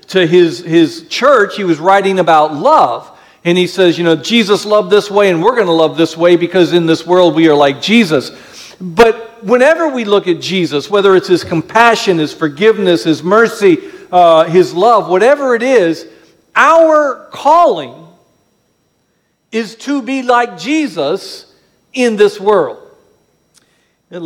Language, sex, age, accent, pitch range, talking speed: English, male, 50-69, American, 170-215 Hz, 160 wpm